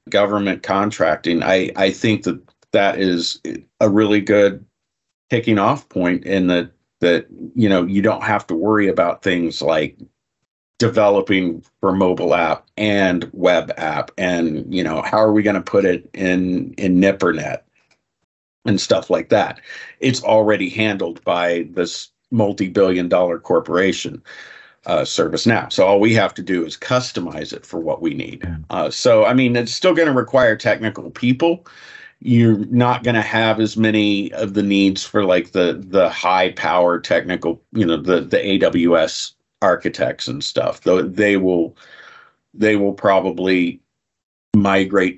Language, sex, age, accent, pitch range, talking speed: English, male, 50-69, American, 90-110 Hz, 155 wpm